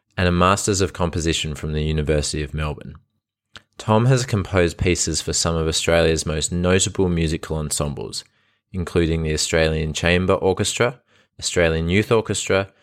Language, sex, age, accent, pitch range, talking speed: English, male, 20-39, Australian, 80-105 Hz, 140 wpm